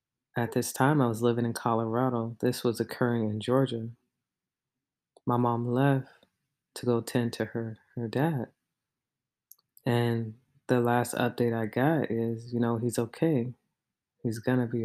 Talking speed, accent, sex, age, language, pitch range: 155 wpm, American, female, 20-39, English, 115-130 Hz